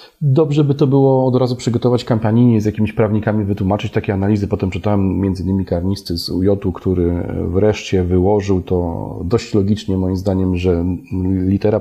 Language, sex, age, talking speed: Polish, male, 40-59, 155 wpm